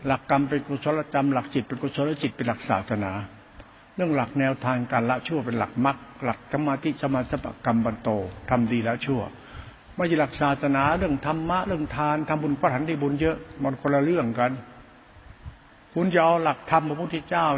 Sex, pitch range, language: male, 125-155 Hz, Thai